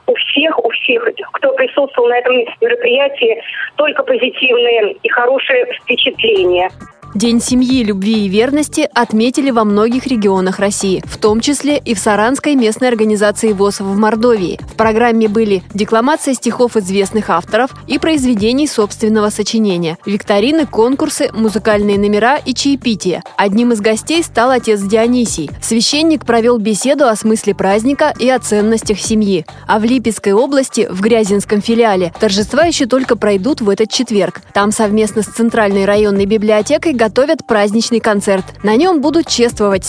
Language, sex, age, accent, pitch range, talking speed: Russian, female, 20-39, native, 210-260 Hz, 145 wpm